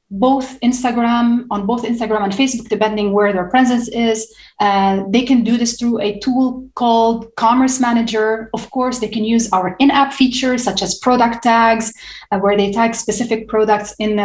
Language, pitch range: English, 205-245 Hz